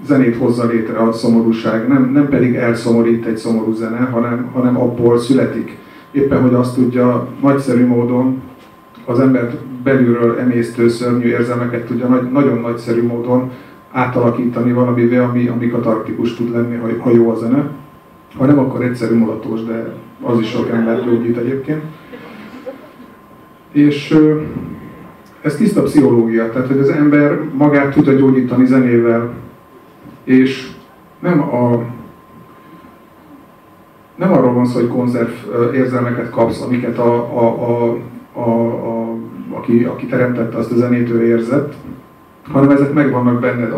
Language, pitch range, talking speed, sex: Hungarian, 120-130 Hz, 130 wpm, male